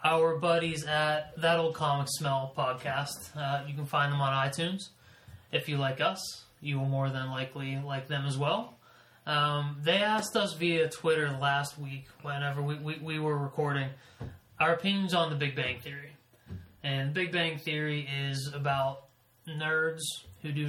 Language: English